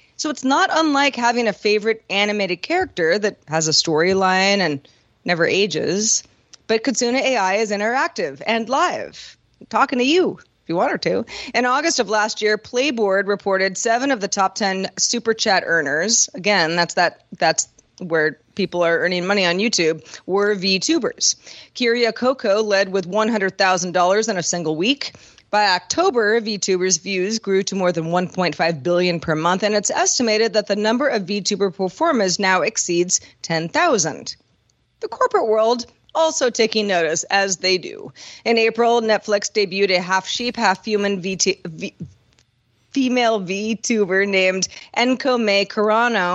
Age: 30-49